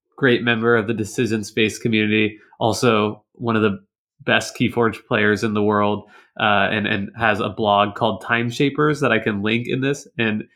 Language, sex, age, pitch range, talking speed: English, male, 20-39, 105-125 Hz, 190 wpm